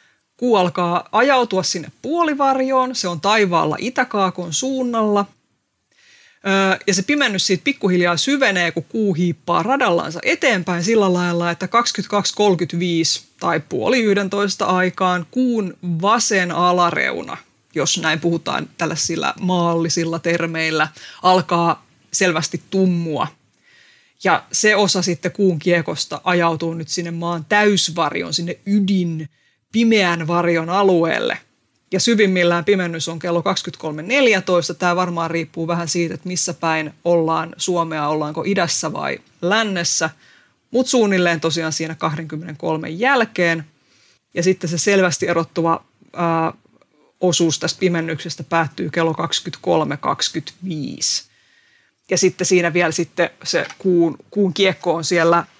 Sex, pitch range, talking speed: female, 165-200 Hz, 115 wpm